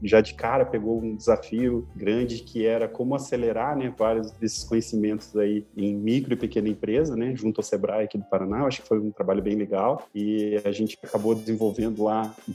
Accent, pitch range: Brazilian, 105-125 Hz